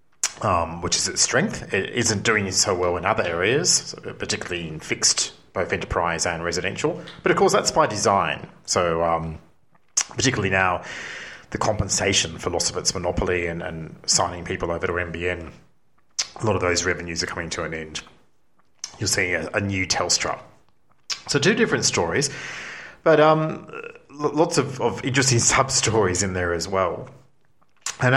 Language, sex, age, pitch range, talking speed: English, male, 40-59, 90-125 Hz, 160 wpm